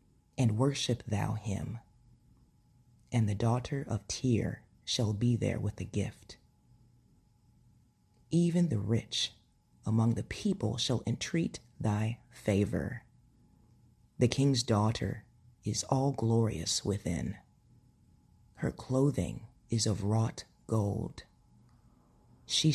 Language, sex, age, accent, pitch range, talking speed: English, female, 30-49, American, 110-125 Hz, 100 wpm